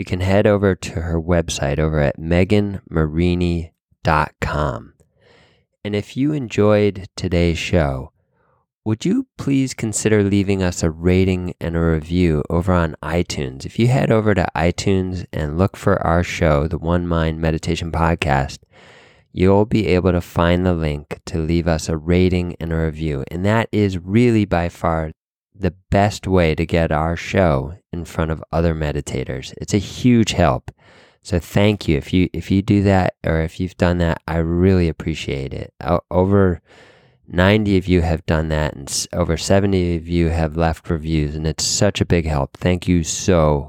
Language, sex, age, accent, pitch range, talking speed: English, male, 20-39, American, 80-105 Hz, 175 wpm